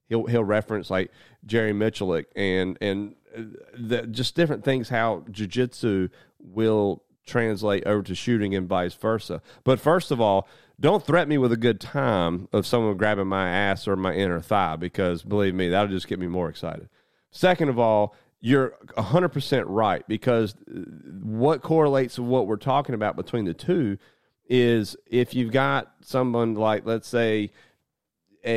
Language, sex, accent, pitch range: English, male, American, 95-120 Hz